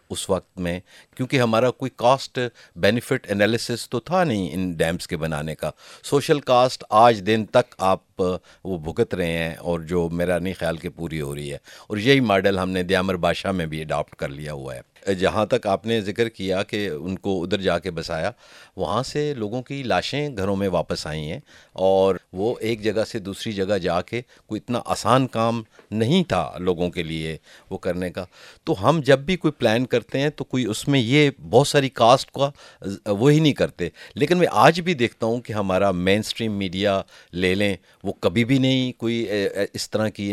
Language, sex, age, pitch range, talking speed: Urdu, male, 50-69, 95-120 Hz, 205 wpm